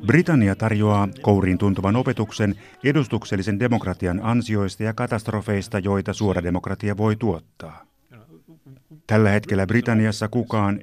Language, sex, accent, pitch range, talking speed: Finnish, male, native, 95-115 Hz, 105 wpm